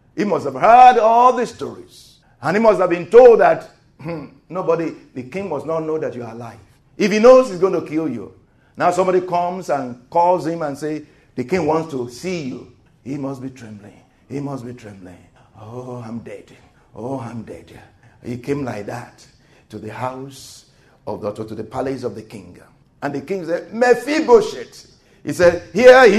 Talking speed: 195 wpm